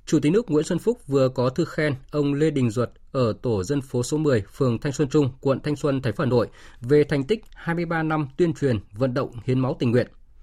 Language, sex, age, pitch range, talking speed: Vietnamese, male, 20-39, 115-150 Hz, 245 wpm